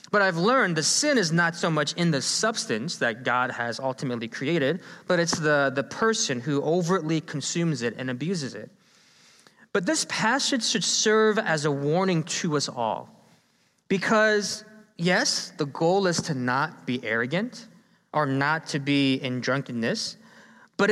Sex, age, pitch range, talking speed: male, 20-39, 155-220 Hz, 160 wpm